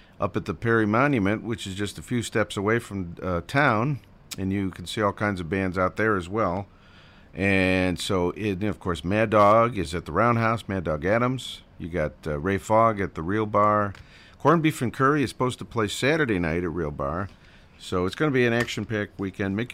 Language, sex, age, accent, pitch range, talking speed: English, male, 50-69, American, 90-110 Hz, 220 wpm